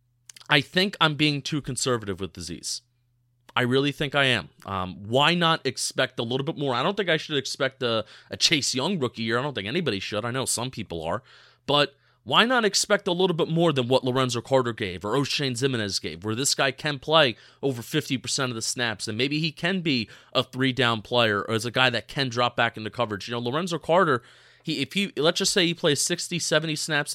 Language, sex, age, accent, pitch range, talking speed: English, male, 30-49, American, 120-155 Hz, 230 wpm